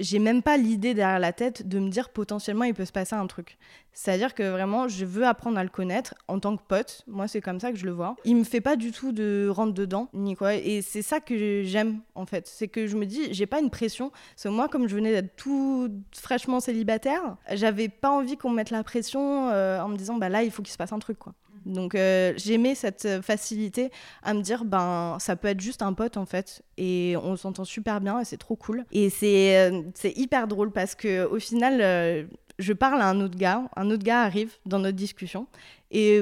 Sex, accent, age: female, French, 20-39